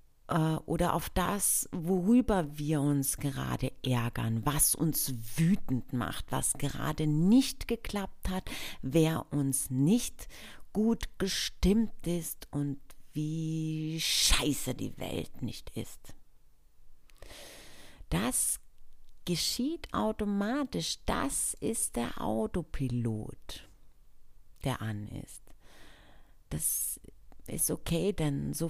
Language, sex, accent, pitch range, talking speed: German, female, German, 135-215 Hz, 95 wpm